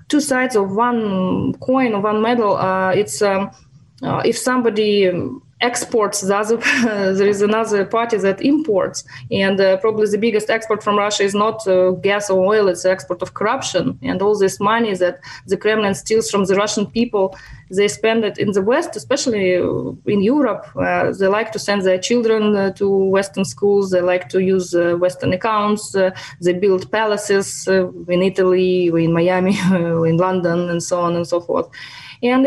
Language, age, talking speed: English, 20-39, 180 wpm